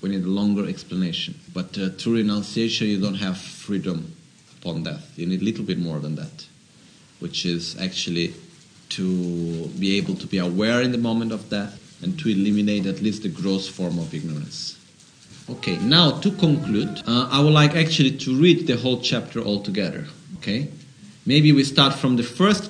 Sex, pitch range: male, 110-160 Hz